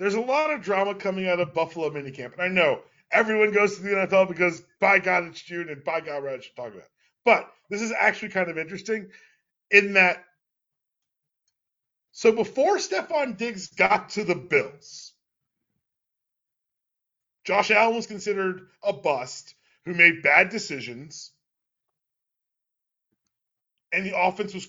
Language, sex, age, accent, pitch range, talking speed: English, male, 40-59, American, 165-215 Hz, 150 wpm